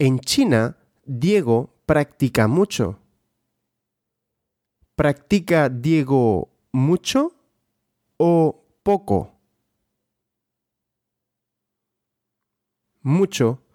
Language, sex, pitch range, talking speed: Russian, male, 115-180 Hz, 50 wpm